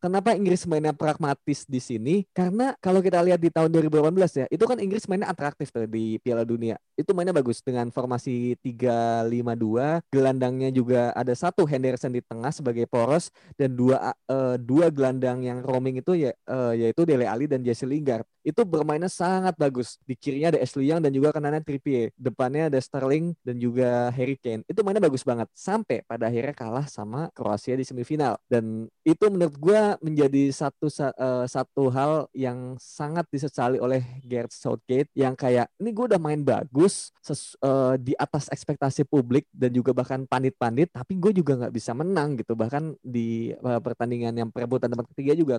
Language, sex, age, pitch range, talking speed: Indonesian, male, 20-39, 125-155 Hz, 175 wpm